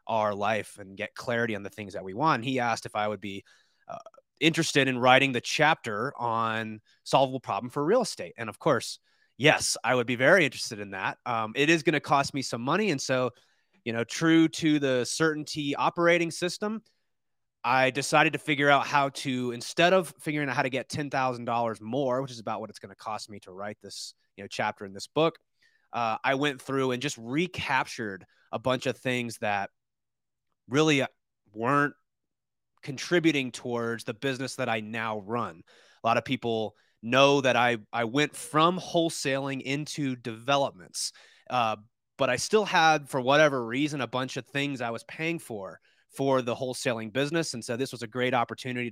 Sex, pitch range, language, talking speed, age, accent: male, 115-145 Hz, English, 195 wpm, 30-49, American